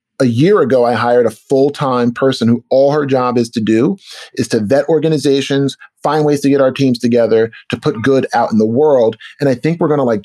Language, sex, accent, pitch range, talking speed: English, male, American, 115-145 Hz, 230 wpm